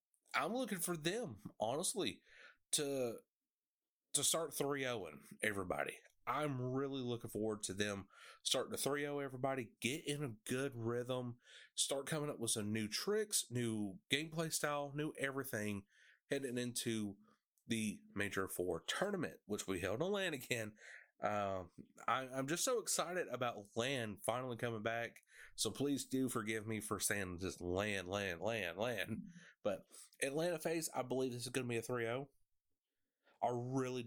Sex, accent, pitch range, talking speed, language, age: male, American, 110-150 Hz, 155 wpm, English, 30-49